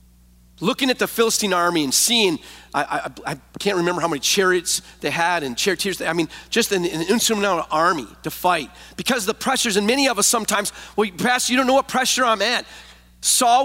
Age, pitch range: 40-59, 130-205 Hz